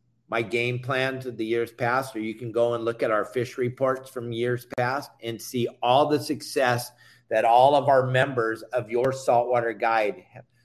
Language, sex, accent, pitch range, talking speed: English, male, American, 125-160 Hz, 195 wpm